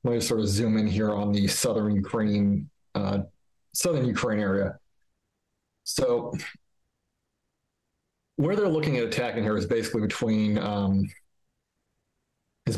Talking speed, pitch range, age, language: 125 wpm, 100-120 Hz, 40-59, English